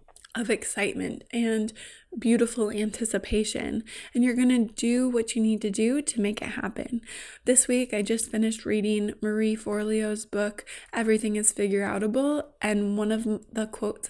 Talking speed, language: 150 wpm, English